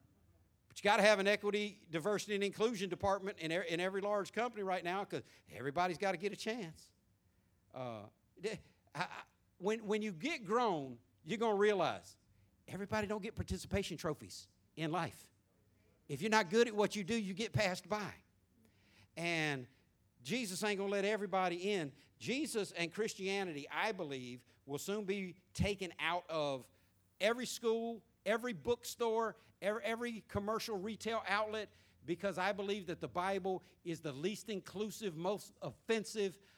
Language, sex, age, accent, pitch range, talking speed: English, male, 50-69, American, 135-210 Hz, 155 wpm